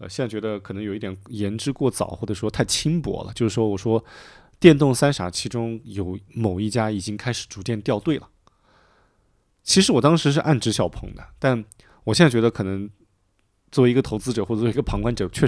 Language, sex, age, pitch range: Chinese, male, 20-39, 105-140 Hz